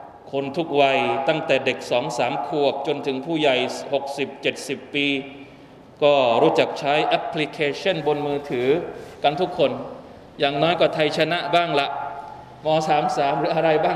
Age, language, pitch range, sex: 20-39, Thai, 140-165 Hz, male